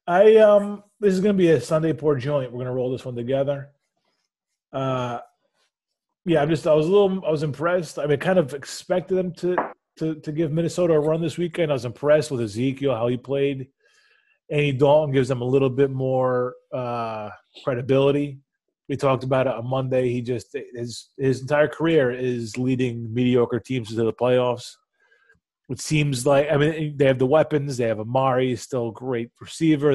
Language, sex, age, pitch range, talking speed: English, male, 30-49, 125-155 Hz, 190 wpm